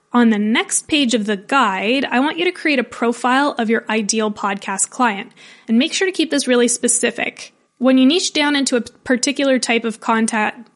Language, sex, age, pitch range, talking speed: English, female, 20-39, 225-285 Hz, 205 wpm